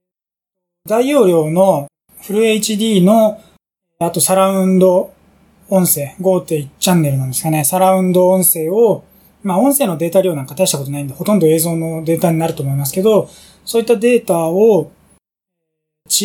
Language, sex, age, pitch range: Japanese, male, 20-39, 170-205 Hz